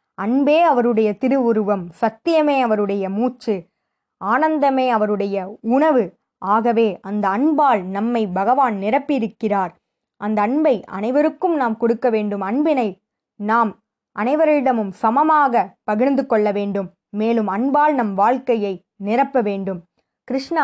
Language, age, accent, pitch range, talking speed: Tamil, 20-39, native, 200-255 Hz, 100 wpm